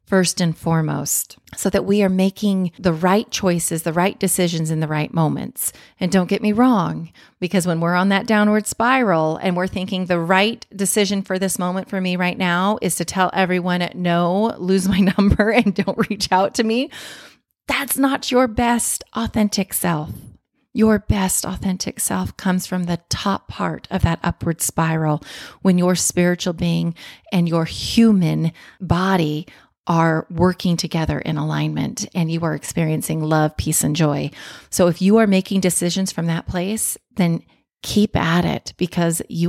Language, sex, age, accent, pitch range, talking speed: English, female, 30-49, American, 170-200 Hz, 170 wpm